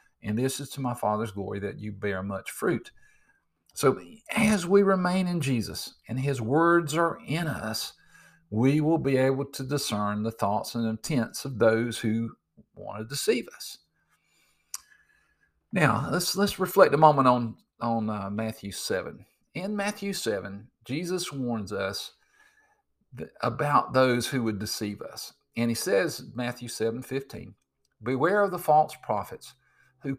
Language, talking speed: English, 150 wpm